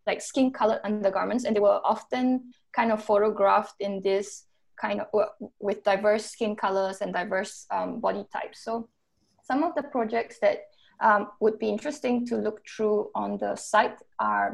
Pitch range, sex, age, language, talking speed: 205-235 Hz, female, 20-39, English, 170 wpm